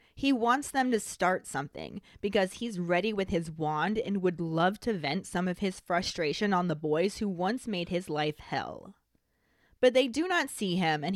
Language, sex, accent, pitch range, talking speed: English, female, American, 175-250 Hz, 200 wpm